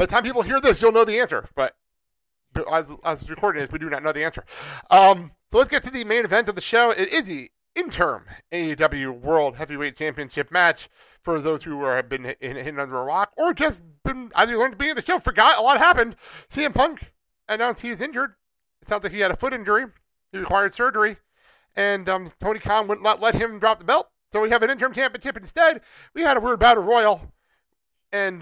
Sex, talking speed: male, 230 wpm